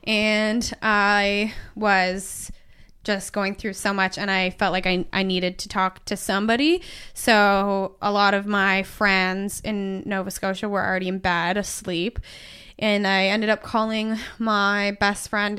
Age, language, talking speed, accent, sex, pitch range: 20-39, English, 160 wpm, American, female, 190-215 Hz